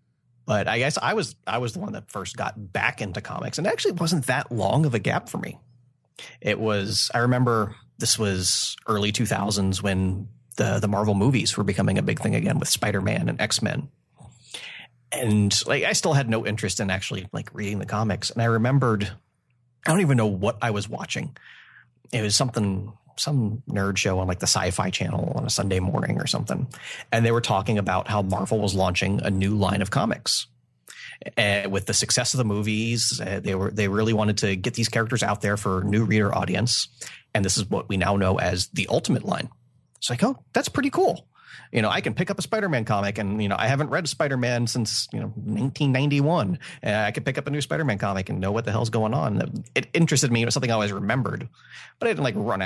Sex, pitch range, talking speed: male, 100-125 Hz, 225 wpm